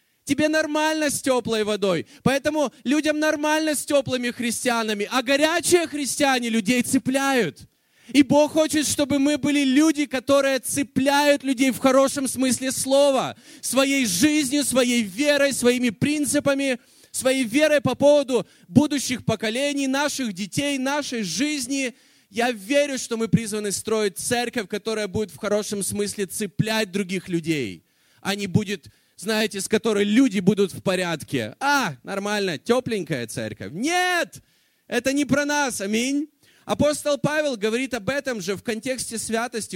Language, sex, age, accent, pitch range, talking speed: Russian, male, 20-39, native, 195-275 Hz, 135 wpm